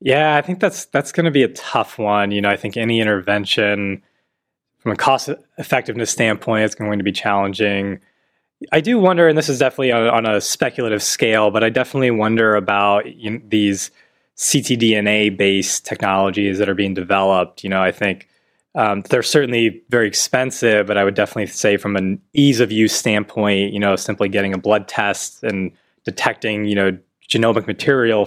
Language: English